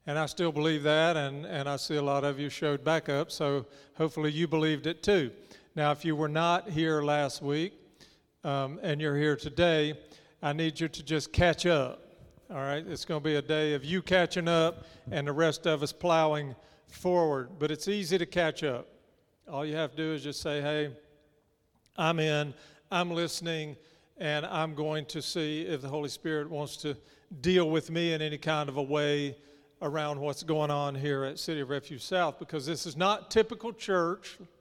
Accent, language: American, English